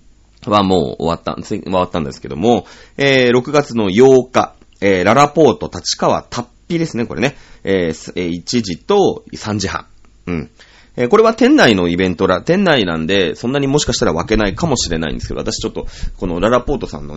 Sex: male